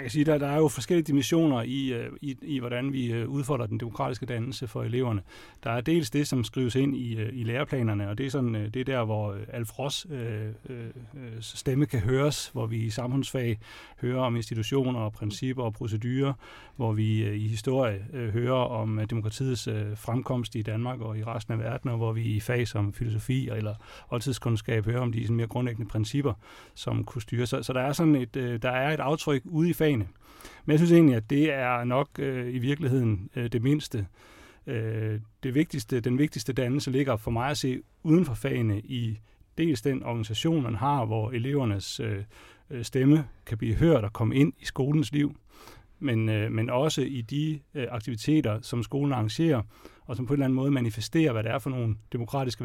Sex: male